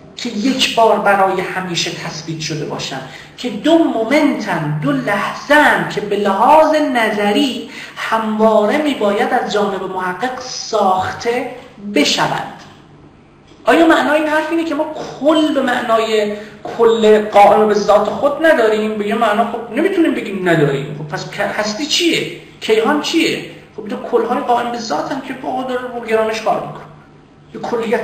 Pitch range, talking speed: 205-295 Hz, 145 wpm